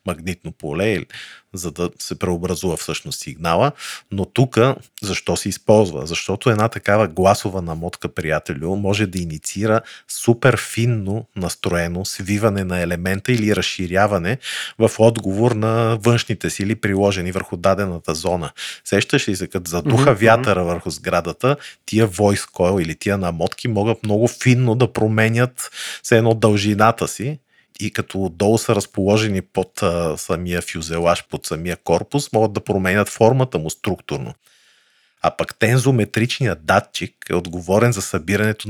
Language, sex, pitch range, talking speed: Bulgarian, male, 90-110 Hz, 135 wpm